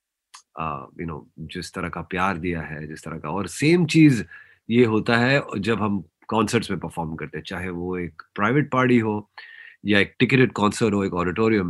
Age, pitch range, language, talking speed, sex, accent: 30-49, 90-120 Hz, Hindi, 195 wpm, male, native